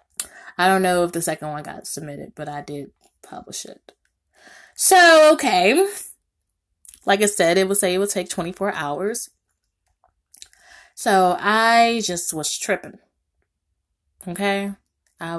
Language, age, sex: English, 20-39, female